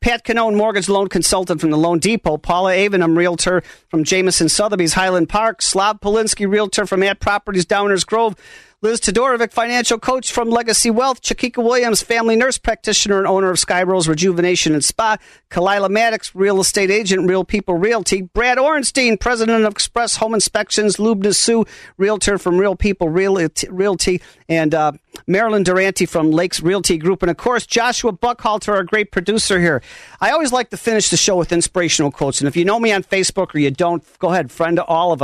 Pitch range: 160-210 Hz